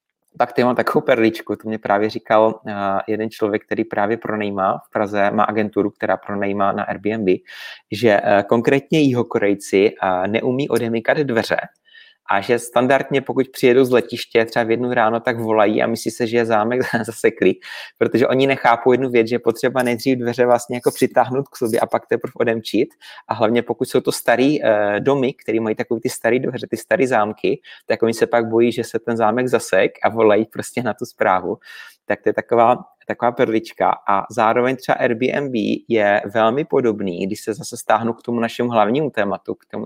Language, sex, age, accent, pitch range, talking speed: Czech, male, 30-49, native, 110-125 Hz, 185 wpm